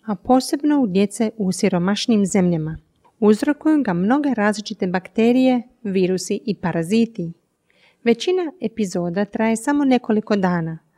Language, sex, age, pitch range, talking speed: Croatian, female, 40-59, 185-245 Hz, 115 wpm